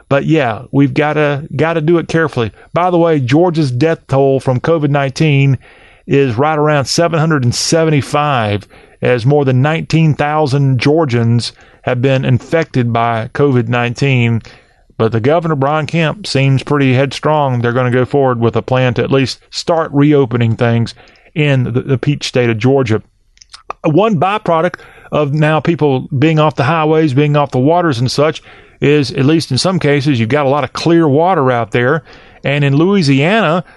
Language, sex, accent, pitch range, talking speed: English, male, American, 130-160 Hz, 165 wpm